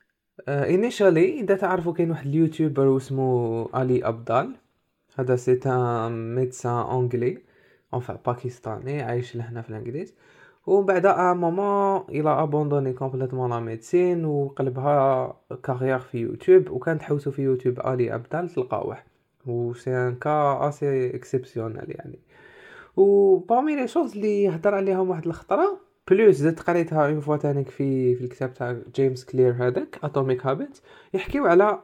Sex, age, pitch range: male, 20-39, 125-185 Hz